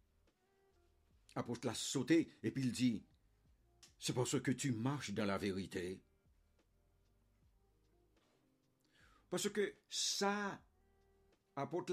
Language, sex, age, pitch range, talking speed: English, male, 60-79, 100-145 Hz, 95 wpm